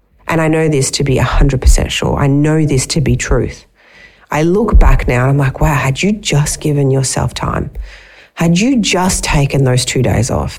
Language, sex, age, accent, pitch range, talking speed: English, female, 40-59, Australian, 135-170 Hz, 205 wpm